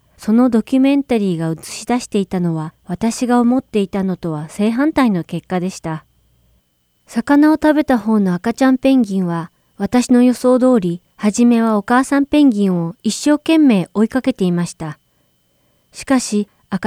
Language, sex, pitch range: Japanese, female, 175-250 Hz